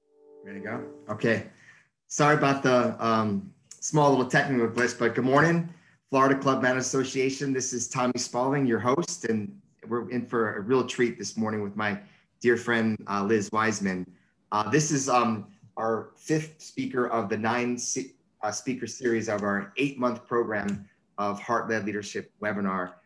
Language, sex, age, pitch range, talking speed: English, male, 30-49, 105-130 Hz, 165 wpm